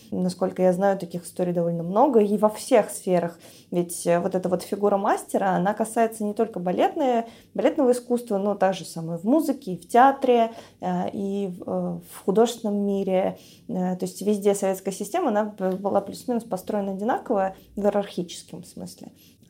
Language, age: Russian, 20-39